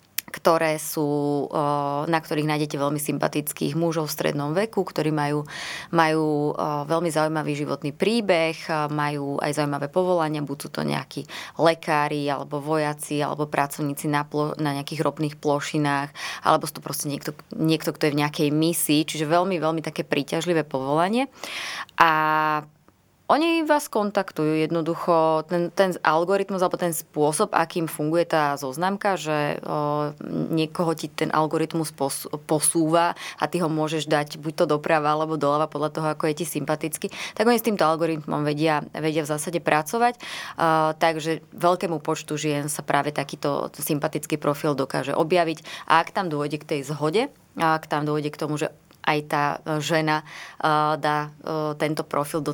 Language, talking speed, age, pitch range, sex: Slovak, 150 wpm, 20-39, 150-165 Hz, female